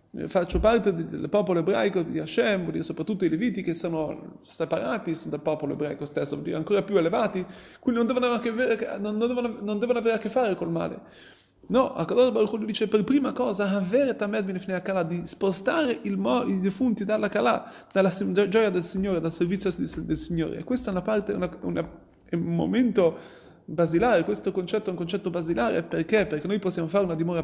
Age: 30-49